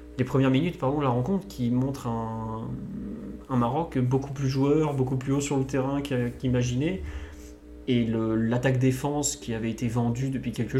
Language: French